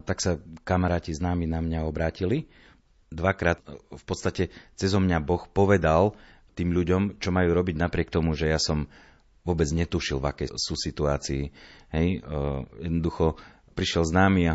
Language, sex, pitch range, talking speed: Slovak, male, 80-95 Hz, 155 wpm